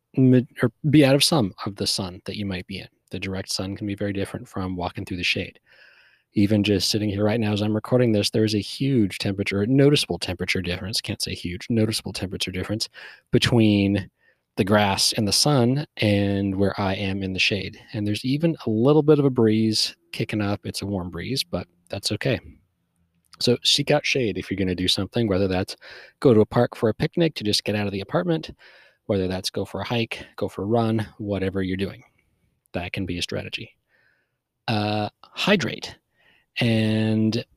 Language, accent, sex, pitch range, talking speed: English, American, male, 95-120 Hz, 205 wpm